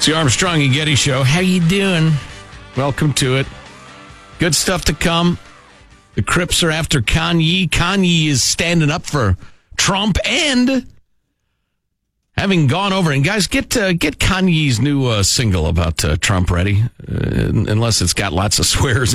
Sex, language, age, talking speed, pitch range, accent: male, English, 50-69, 160 wpm, 105-170 Hz, American